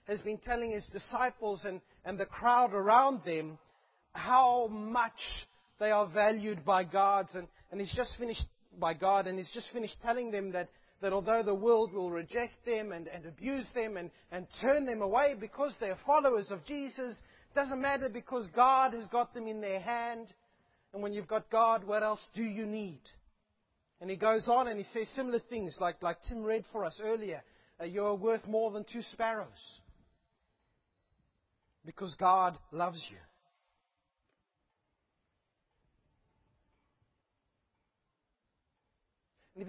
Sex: male